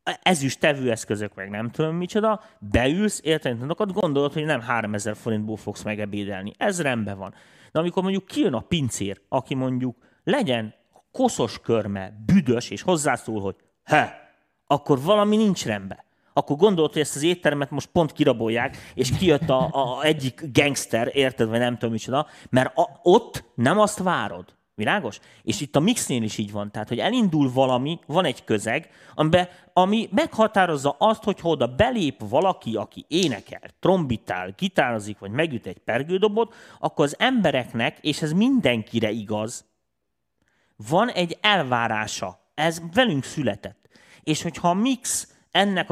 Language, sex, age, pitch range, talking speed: Hungarian, male, 30-49, 115-175 Hz, 150 wpm